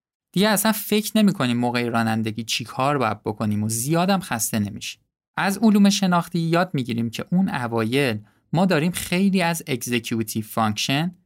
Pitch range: 120-170 Hz